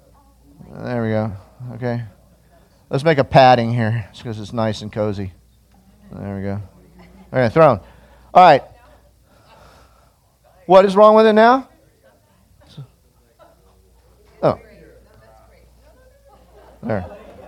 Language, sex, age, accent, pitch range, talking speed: English, male, 40-59, American, 115-180 Hz, 105 wpm